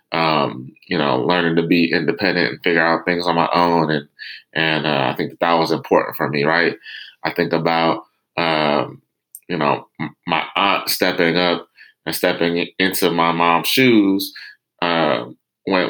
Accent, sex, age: American, male, 20-39